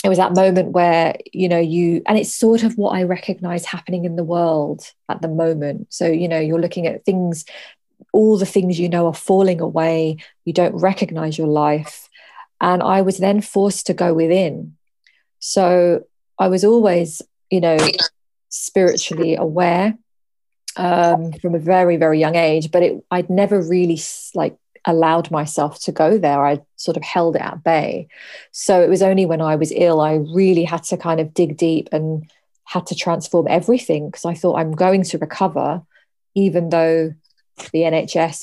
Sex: female